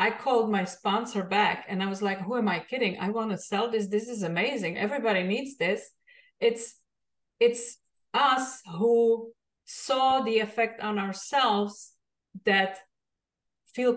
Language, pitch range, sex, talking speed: English, 195-235 Hz, female, 150 wpm